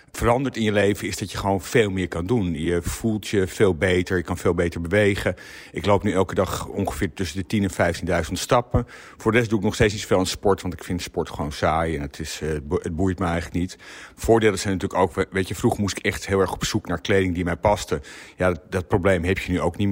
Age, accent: 50-69, Dutch